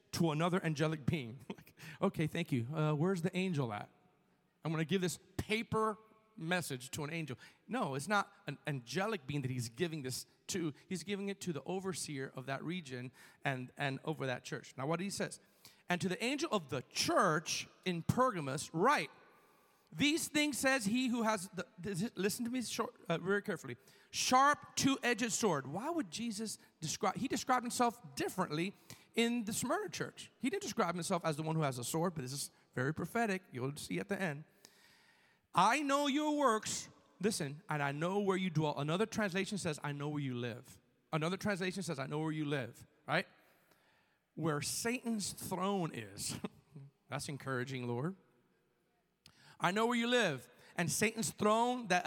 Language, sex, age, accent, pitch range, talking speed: English, male, 40-59, American, 145-210 Hz, 175 wpm